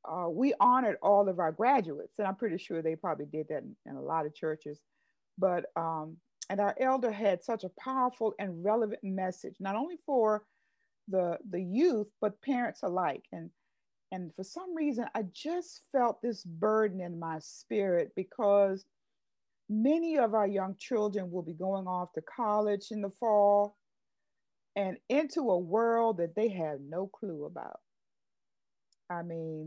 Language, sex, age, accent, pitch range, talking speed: English, female, 50-69, American, 175-225 Hz, 165 wpm